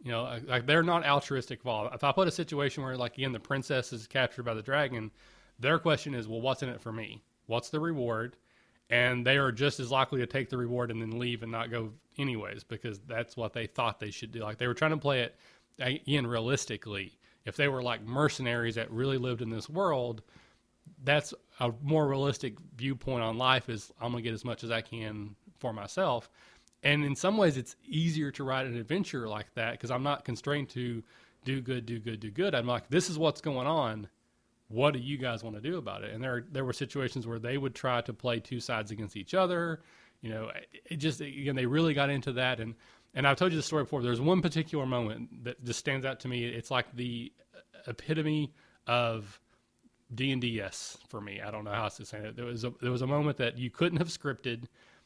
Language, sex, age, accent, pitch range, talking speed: English, male, 30-49, American, 115-140 Hz, 235 wpm